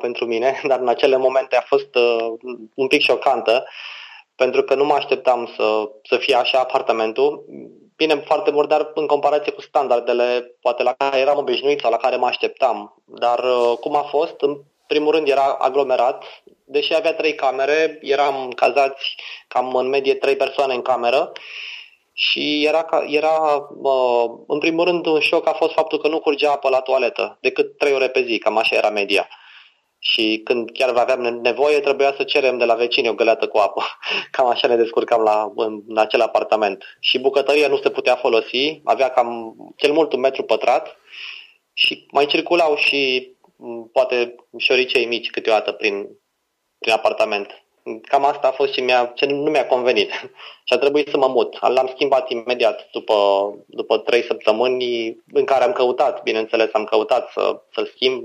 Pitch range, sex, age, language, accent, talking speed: 125-160 Hz, male, 20-39, Romanian, native, 170 wpm